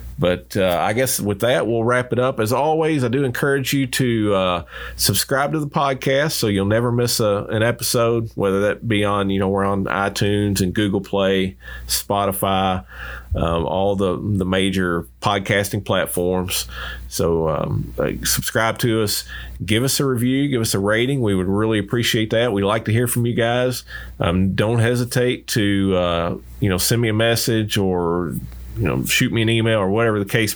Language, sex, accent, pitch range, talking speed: English, male, American, 95-115 Hz, 185 wpm